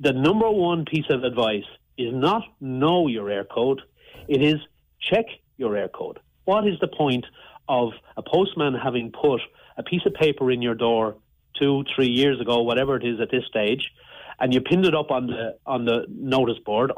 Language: English